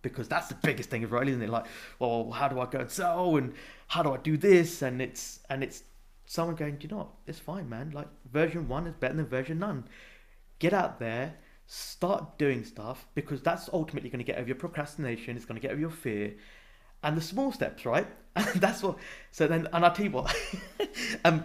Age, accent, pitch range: 20-39, British, 125-185 Hz